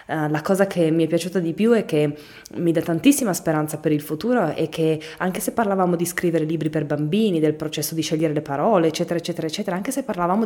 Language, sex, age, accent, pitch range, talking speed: Italian, female, 20-39, native, 160-200 Hz, 230 wpm